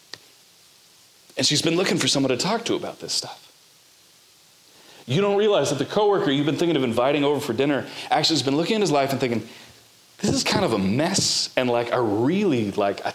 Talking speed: 215 wpm